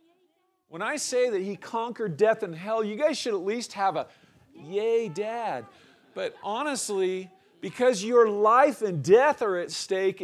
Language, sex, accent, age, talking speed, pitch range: English, male, American, 40-59, 165 wpm, 140-230 Hz